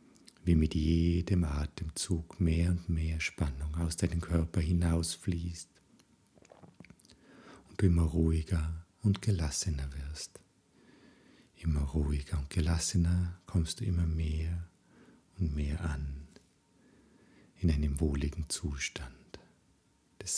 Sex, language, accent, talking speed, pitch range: male, German, German, 105 wpm, 80-95 Hz